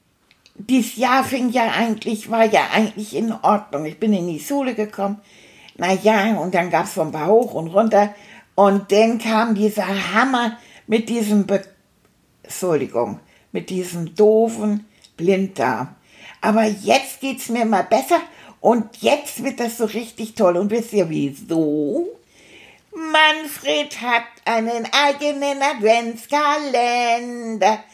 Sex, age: female, 60-79